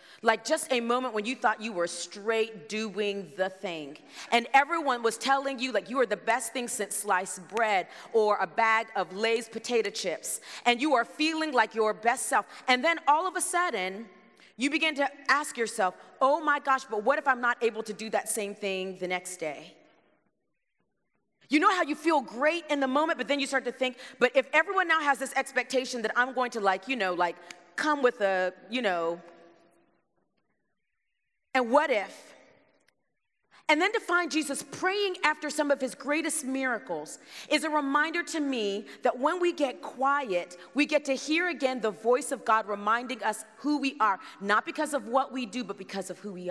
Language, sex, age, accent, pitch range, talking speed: English, female, 30-49, American, 215-295 Hz, 200 wpm